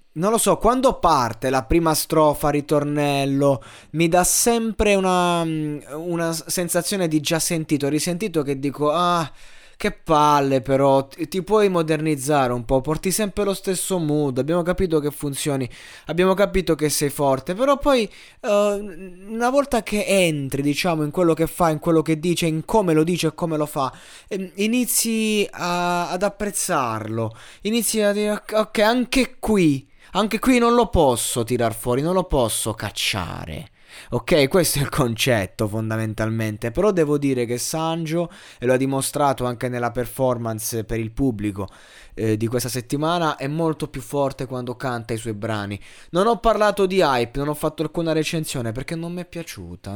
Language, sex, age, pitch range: Italian, male, 20-39, 130-175 Hz